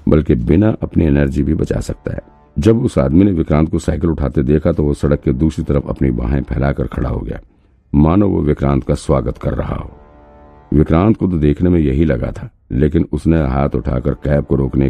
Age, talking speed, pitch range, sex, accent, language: 50-69, 210 wpm, 70-80 Hz, male, native, Hindi